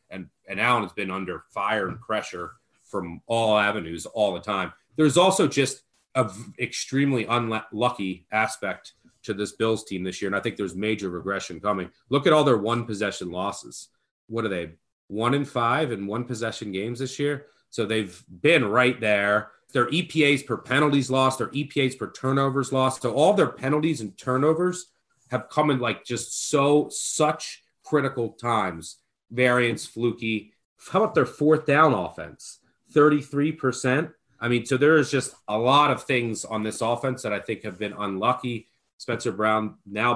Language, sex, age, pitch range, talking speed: English, male, 30-49, 105-135 Hz, 170 wpm